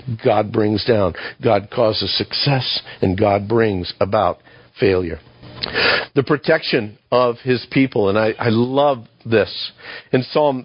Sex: male